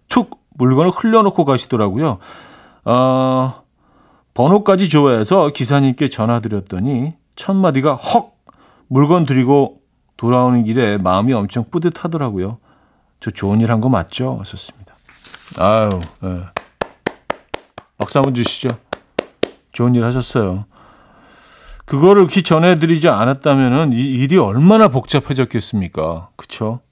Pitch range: 95-145 Hz